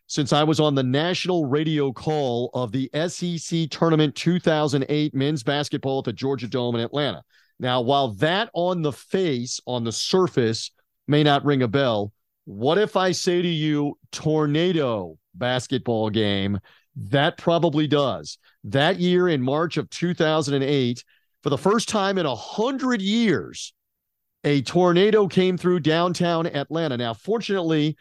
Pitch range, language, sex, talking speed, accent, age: 130-170 Hz, English, male, 145 wpm, American, 40-59